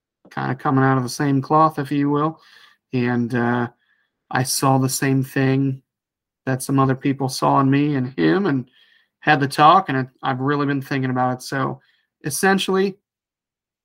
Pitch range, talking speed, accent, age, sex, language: 130-150 Hz, 175 wpm, American, 30-49, male, English